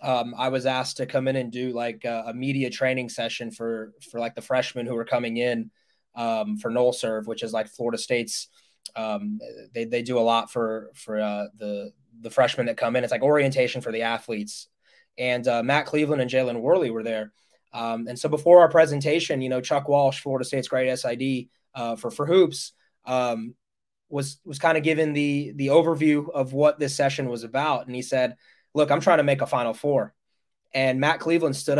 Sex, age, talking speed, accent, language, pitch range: male, 20-39, 210 wpm, American, English, 125-145 Hz